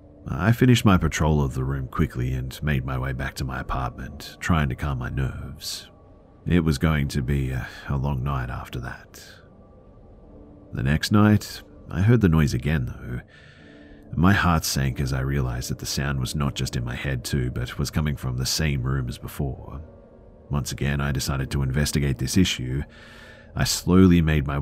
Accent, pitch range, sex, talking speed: Australian, 65-85 Hz, male, 190 wpm